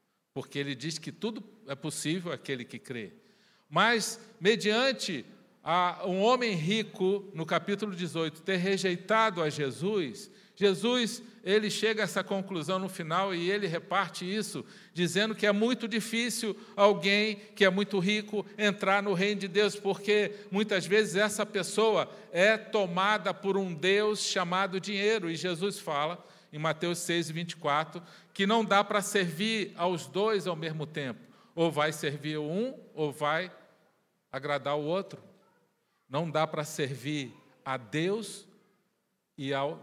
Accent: Brazilian